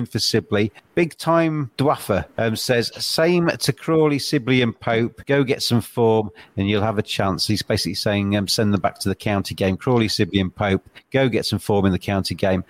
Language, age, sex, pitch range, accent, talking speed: English, 40-59, male, 110-150 Hz, British, 215 wpm